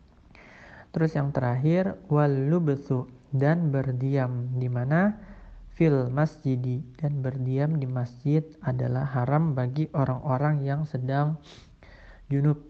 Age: 40-59